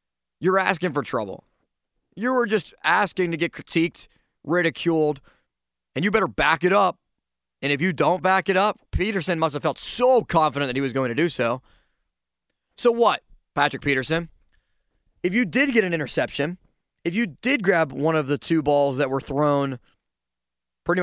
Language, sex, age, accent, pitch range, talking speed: English, male, 30-49, American, 130-175 Hz, 175 wpm